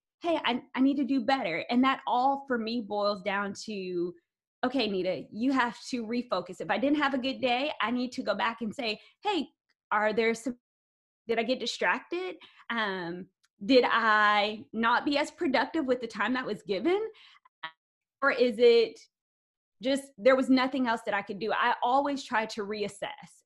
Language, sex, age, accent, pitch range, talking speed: English, female, 20-39, American, 215-275 Hz, 185 wpm